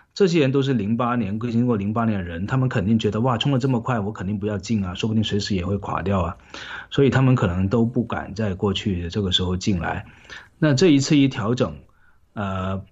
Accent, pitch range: native, 100-120 Hz